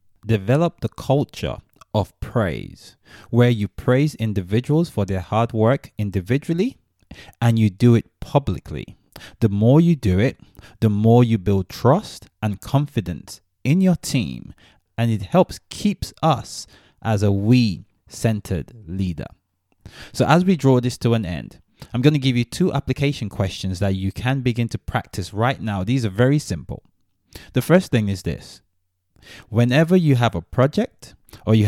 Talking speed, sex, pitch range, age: 160 wpm, male, 100-130 Hz, 30-49